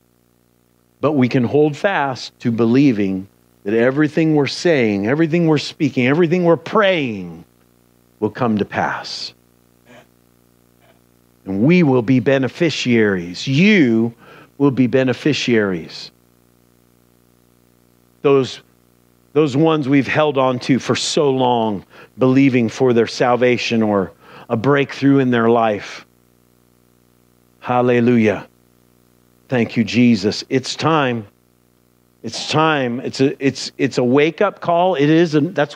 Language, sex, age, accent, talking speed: English, male, 50-69, American, 115 wpm